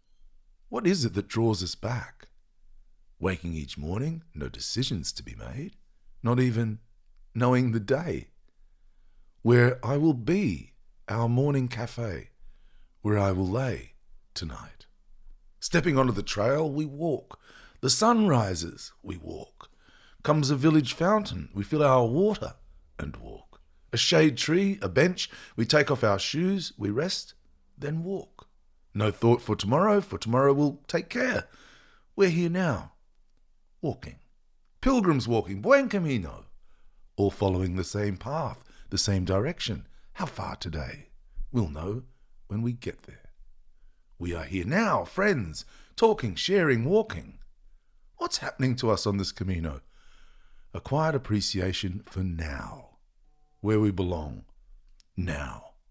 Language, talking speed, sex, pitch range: English, 135 wpm, male, 95-155 Hz